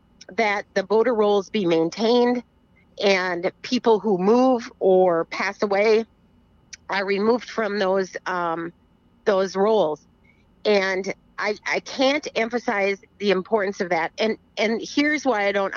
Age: 40-59